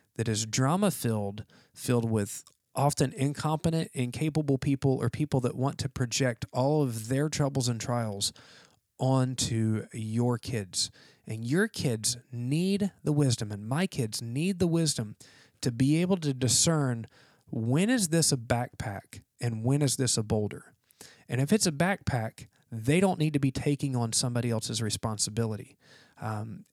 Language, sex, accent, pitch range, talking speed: English, male, American, 115-145 Hz, 155 wpm